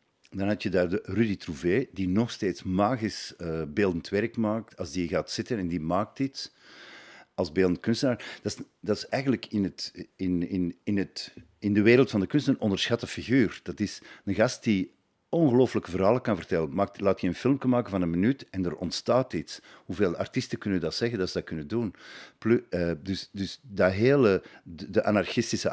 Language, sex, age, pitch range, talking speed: Dutch, male, 50-69, 90-120 Hz, 190 wpm